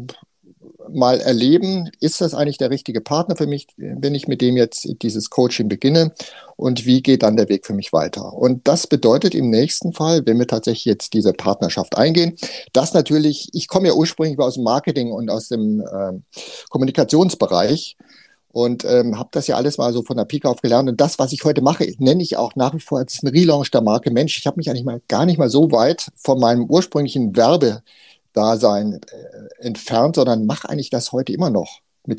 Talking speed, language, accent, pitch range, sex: 205 wpm, German, German, 120-160 Hz, male